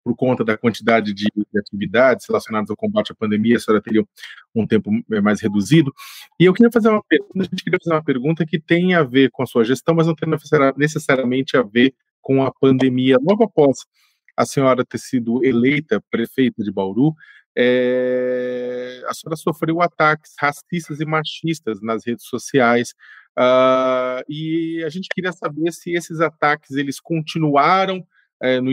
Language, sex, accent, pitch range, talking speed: Portuguese, male, Brazilian, 125-165 Hz, 165 wpm